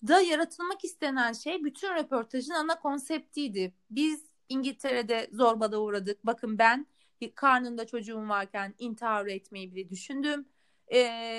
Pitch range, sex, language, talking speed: 215-315 Hz, female, Turkish, 120 wpm